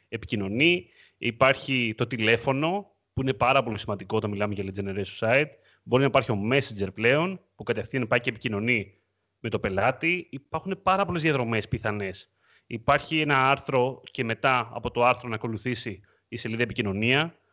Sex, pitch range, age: male, 110-135 Hz, 30-49